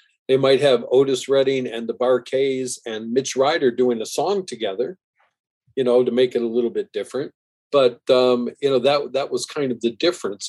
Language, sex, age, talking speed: English, male, 50-69, 200 wpm